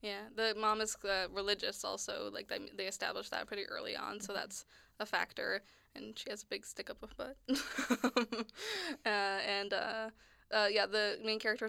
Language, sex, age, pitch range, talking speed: English, female, 10-29, 200-245 Hz, 185 wpm